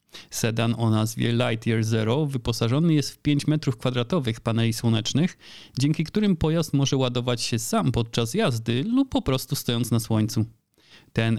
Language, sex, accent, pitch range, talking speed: Polish, male, native, 115-145 Hz, 150 wpm